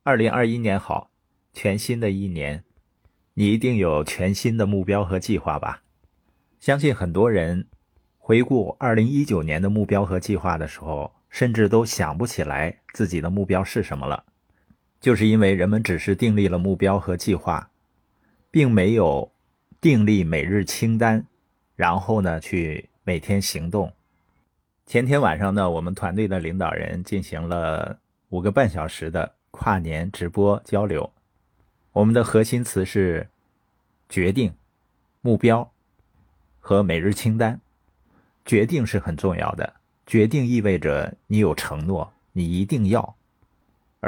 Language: Chinese